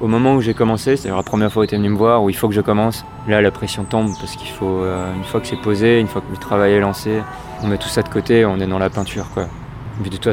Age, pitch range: 20-39, 95-115 Hz